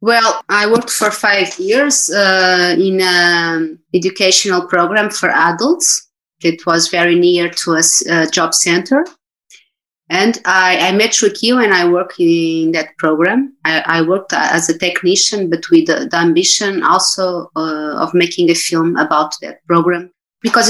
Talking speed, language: 160 wpm, English